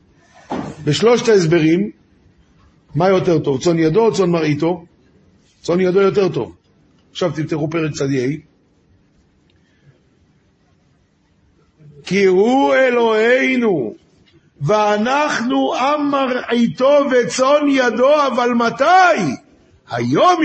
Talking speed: 85 wpm